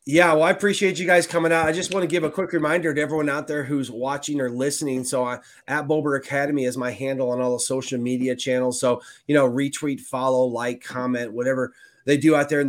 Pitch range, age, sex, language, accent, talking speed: 125-145 Hz, 30-49, male, English, American, 240 wpm